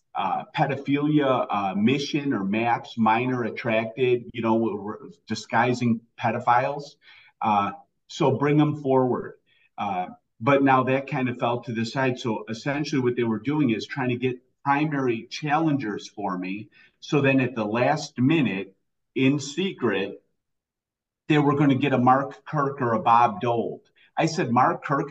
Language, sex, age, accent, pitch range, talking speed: English, male, 40-59, American, 120-150 Hz, 155 wpm